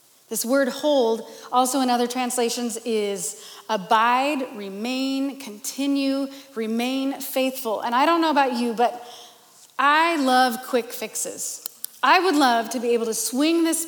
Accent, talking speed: American, 145 wpm